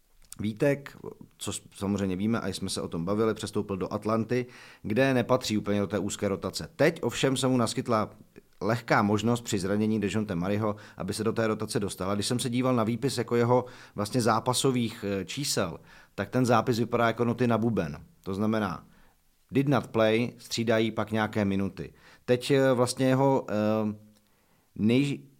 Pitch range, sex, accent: 100-120 Hz, male, native